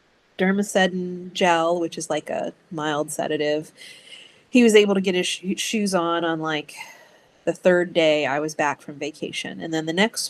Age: 30-49